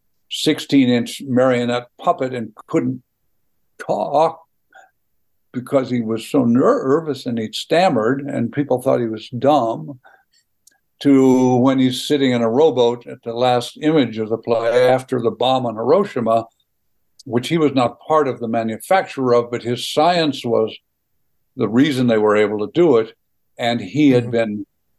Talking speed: 155 wpm